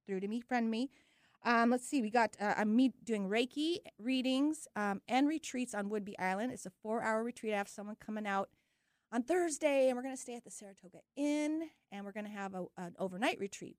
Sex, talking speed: female, 220 wpm